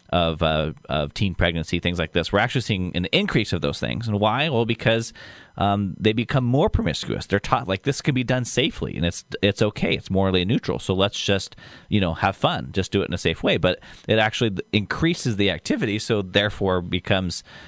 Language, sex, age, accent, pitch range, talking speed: English, male, 30-49, American, 90-130 Hz, 215 wpm